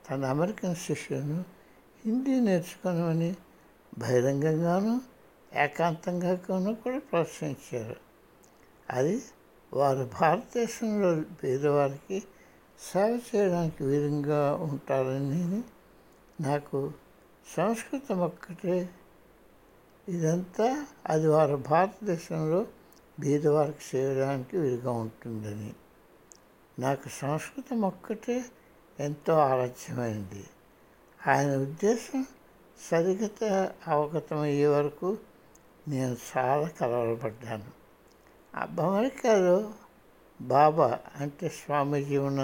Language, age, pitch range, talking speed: Hindi, 60-79, 135-185 Hz, 55 wpm